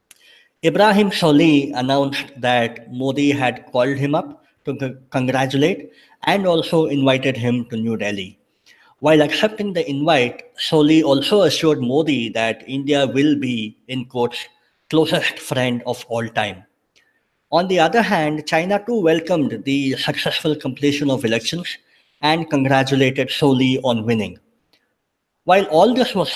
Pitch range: 125-155 Hz